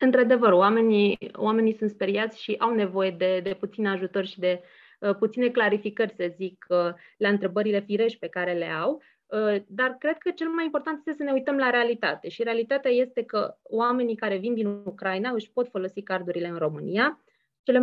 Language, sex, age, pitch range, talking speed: Romanian, female, 20-39, 195-235 Hz, 190 wpm